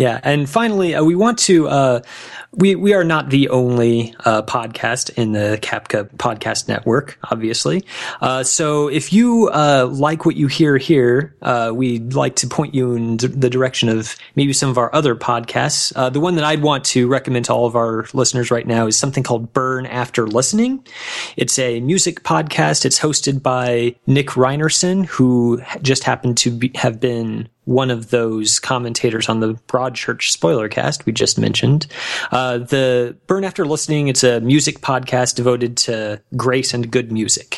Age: 30-49